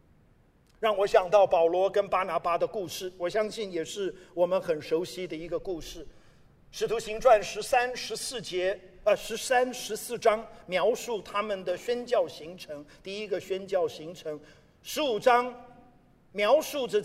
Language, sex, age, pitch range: Chinese, male, 50-69, 190-315 Hz